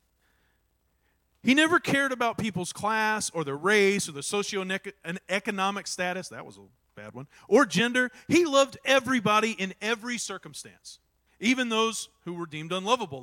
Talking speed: 145 wpm